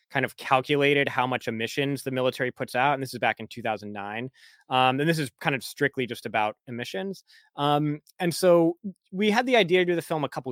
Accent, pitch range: American, 120-150 Hz